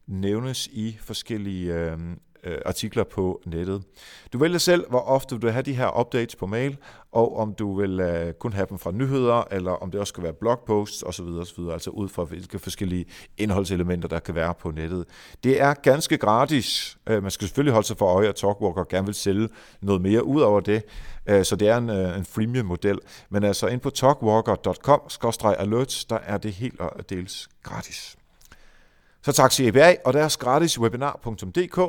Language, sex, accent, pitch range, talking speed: Danish, male, native, 95-130 Hz, 175 wpm